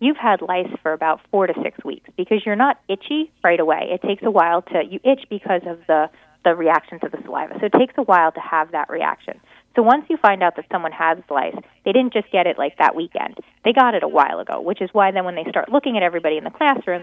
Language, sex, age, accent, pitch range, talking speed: English, female, 20-39, American, 175-255 Hz, 265 wpm